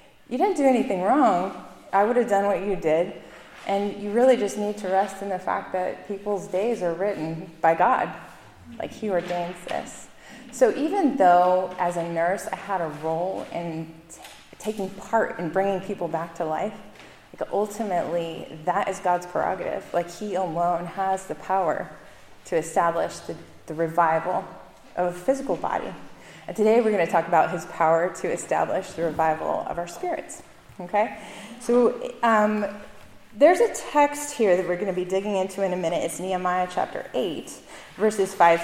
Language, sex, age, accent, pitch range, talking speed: English, female, 20-39, American, 175-215 Hz, 175 wpm